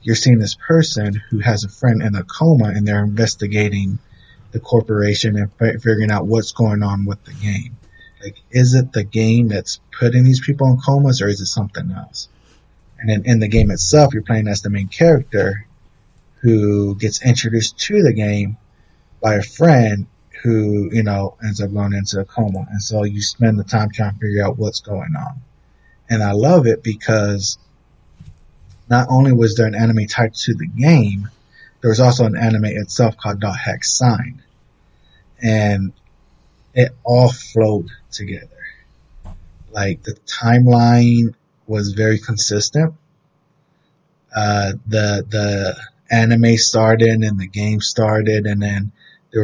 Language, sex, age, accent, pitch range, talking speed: English, male, 30-49, American, 105-120 Hz, 160 wpm